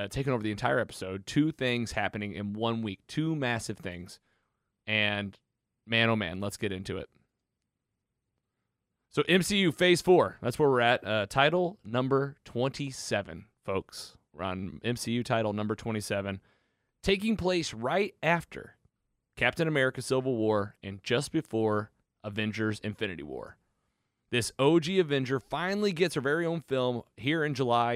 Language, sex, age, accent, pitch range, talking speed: English, male, 30-49, American, 110-140 Hz, 145 wpm